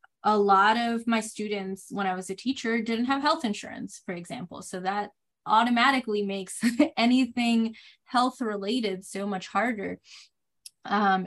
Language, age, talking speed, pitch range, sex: English, 20-39, 140 wpm, 190-230 Hz, female